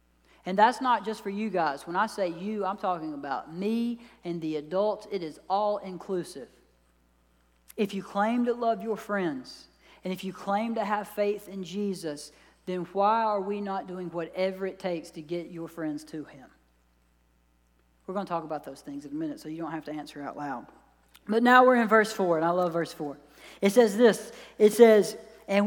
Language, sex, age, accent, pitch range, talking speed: English, female, 40-59, American, 165-225 Hz, 205 wpm